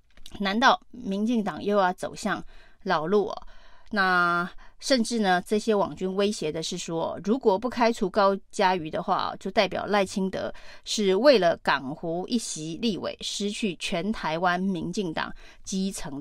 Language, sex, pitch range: Chinese, female, 180-220 Hz